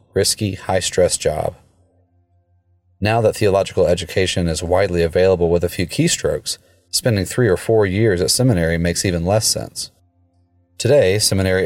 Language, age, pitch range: English, 30-49, 90-100 Hz